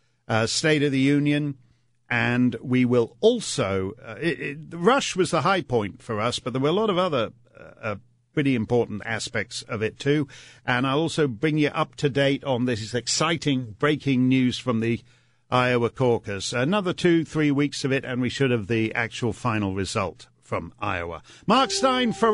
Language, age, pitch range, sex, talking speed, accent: English, 50-69, 115-160 Hz, male, 190 wpm, British